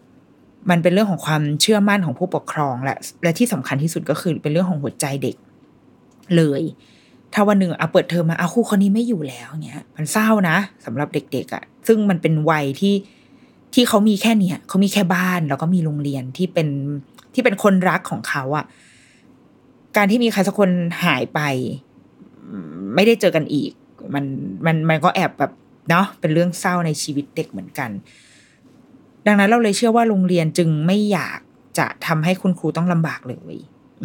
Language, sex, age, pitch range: Thai, female, 20-39, 155-205 Hz